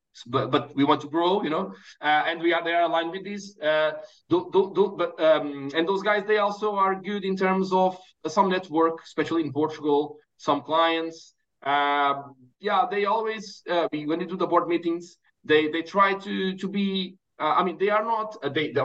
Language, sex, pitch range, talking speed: English, male, 155-190 Hz, 200 wpm